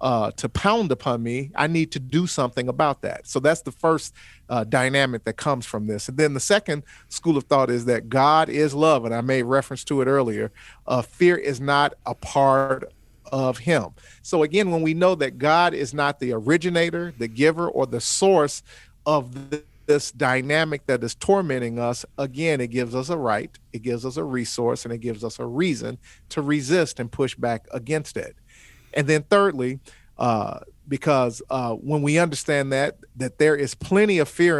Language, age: English, 40-59